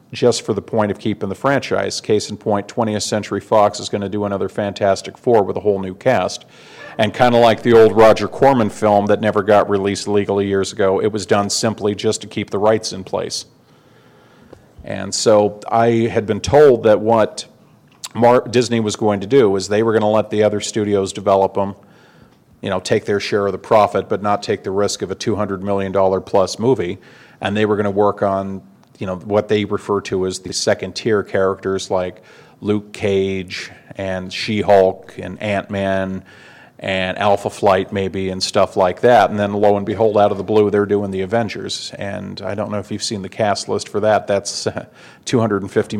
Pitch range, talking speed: 95-105 Hz, 200 wpm